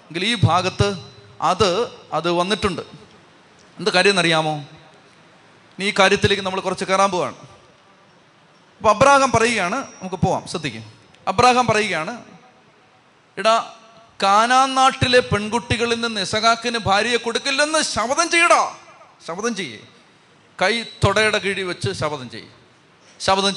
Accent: native